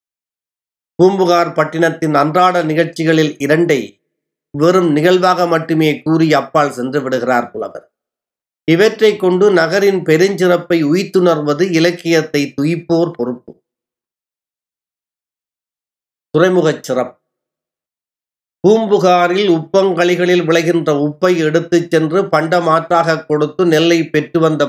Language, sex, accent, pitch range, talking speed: Tamil, male, native, 155-185 Hz, 85 wpm